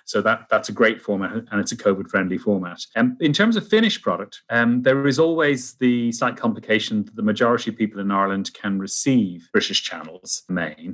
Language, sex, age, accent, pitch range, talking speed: English, male, 30-49, British, 95-120 Hz, 205 wpm